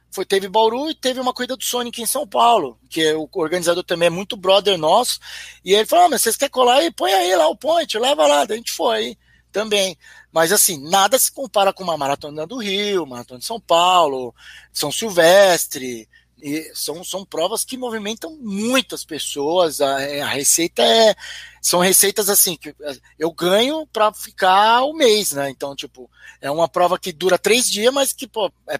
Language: Portuguese